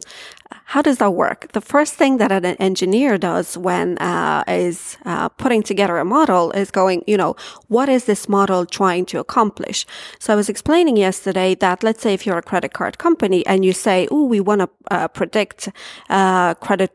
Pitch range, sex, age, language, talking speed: 190-240 Hz, female, 30-49, English, 190 wpm